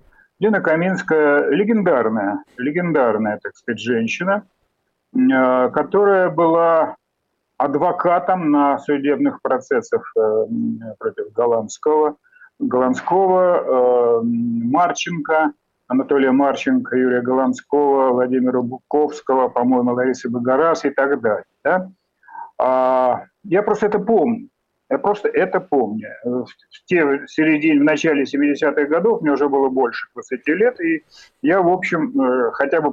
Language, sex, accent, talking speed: Russian, male, native, 100 wpm